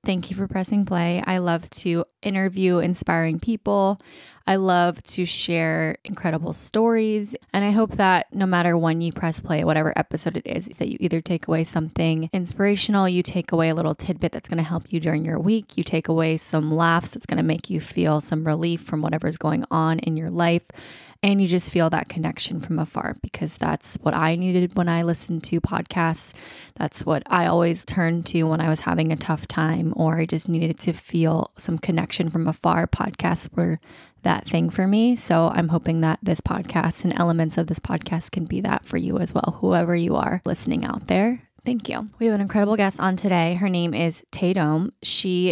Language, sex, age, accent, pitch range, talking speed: English, female, 20-39, American, 160-185 Hz, 205 wpm